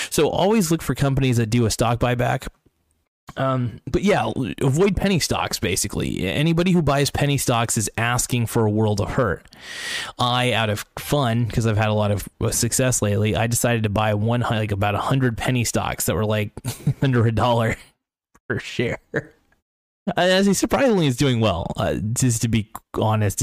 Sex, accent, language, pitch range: male, American, English, 105-125 Hz